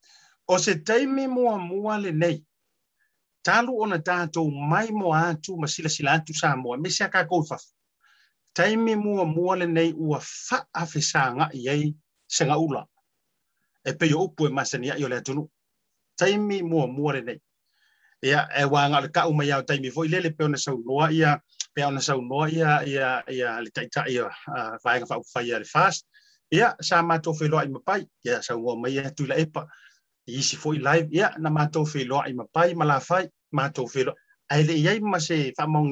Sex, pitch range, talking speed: male, 140-170 Hz, 45 wpm